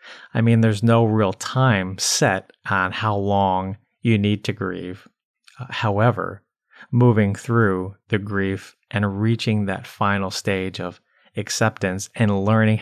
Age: 30-49